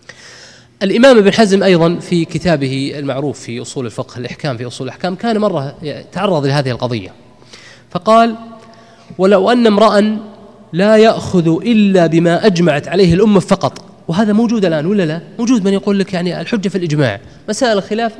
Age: 20-39